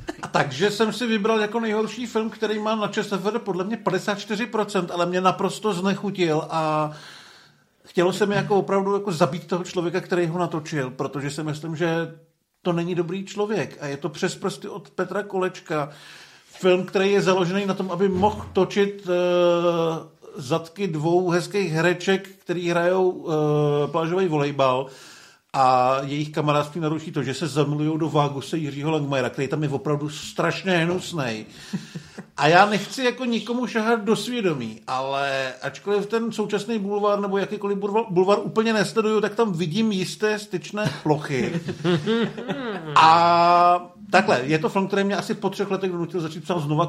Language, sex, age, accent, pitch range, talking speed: Czech, male, 50-69, native, 150-200 Hz, 155 wpm